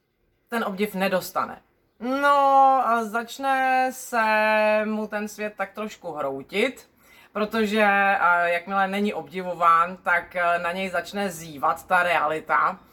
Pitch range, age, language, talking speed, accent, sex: 170-215 Hz, 30-49, Czech, 110 wpm, native, female